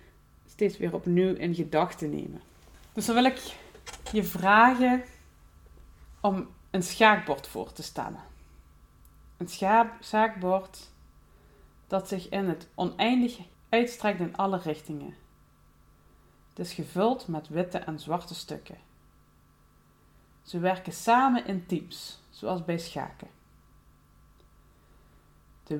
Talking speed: 105 wpm